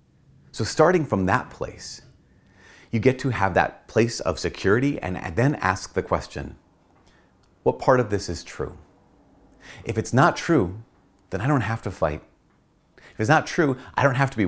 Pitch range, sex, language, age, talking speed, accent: 90-135 Hz, male, English, 40-59, 180 wpm, American